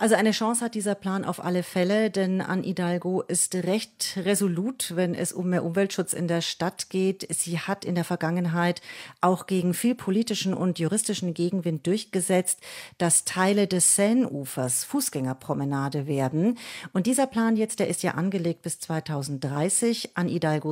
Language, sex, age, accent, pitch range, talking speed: German, female, 40-59, German, 160-200 Hz, 155 wpm